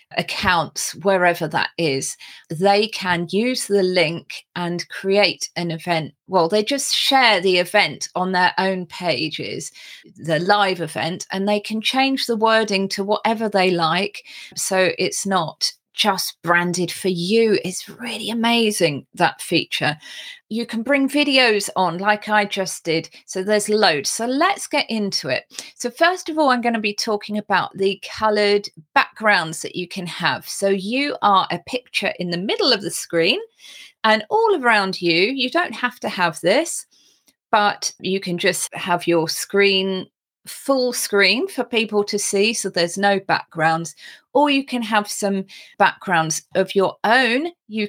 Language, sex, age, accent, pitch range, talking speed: English, female, 30-49, British, 180-225 Hz, 165 wpm